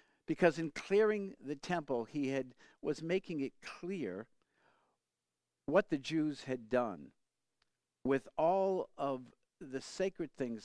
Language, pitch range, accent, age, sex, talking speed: English, 130-165 Hz, American, 50-69, male, 125 wpm